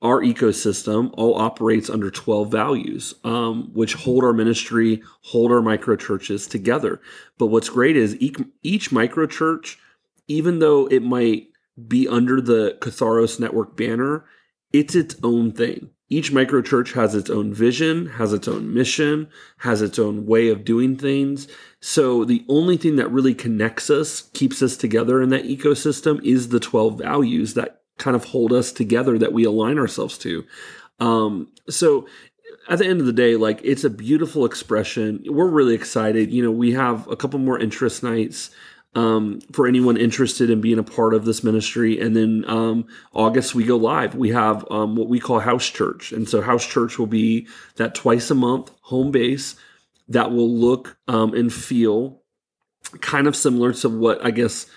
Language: English